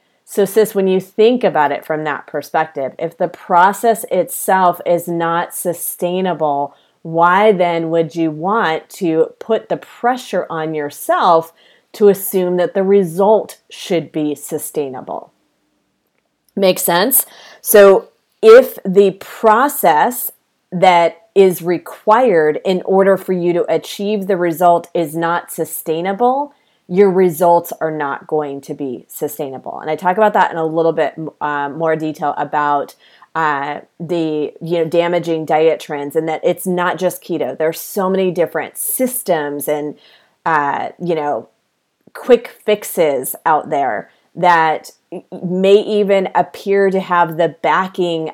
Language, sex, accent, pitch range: English, female, American, 155-195 Hz